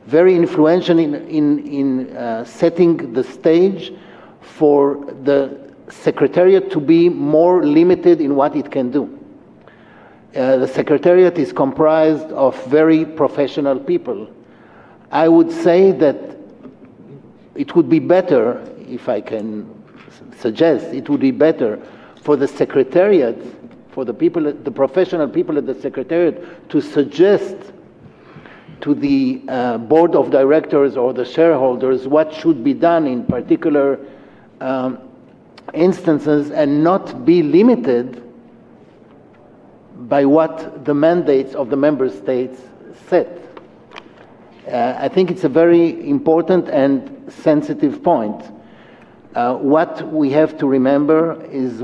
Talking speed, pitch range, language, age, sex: 125 wpm, 140-180 Hz, English, 60-79, male